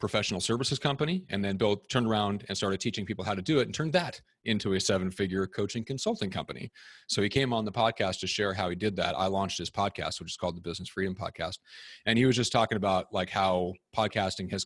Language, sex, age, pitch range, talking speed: English, male, 30-49, 95-120 Hz, 240 wpm